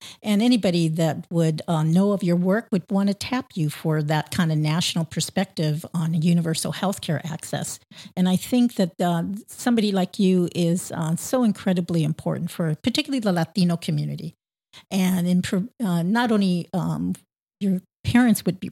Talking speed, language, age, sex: 165 wpm, English, 50-69, female